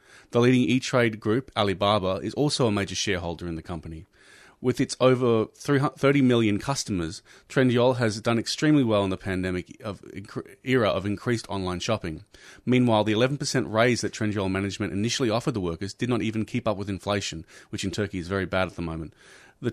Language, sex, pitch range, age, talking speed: English, male, 95-120 Hz, 30-49, 185 wpm